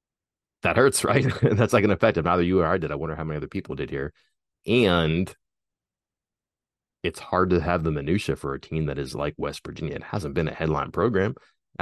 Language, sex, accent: English, male, American